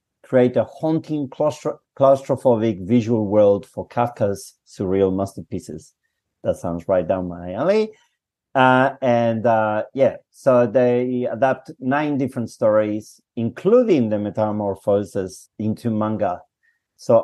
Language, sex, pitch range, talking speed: English, male, 110-155 Hz, 115 wpm